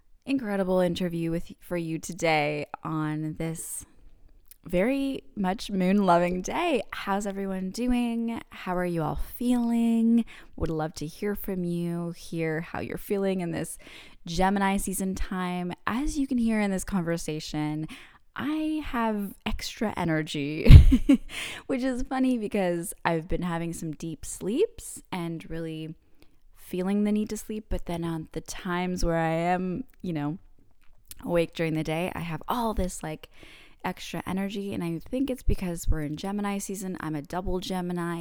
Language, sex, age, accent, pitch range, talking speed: English, female, 20-39, American, 160-205 Hz, 150 wpm